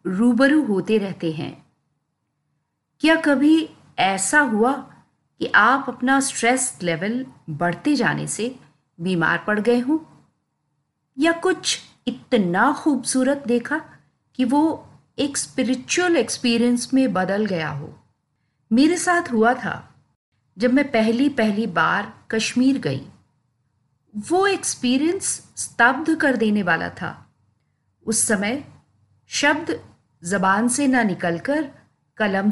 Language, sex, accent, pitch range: Hindi, female, native, 175-275 Hz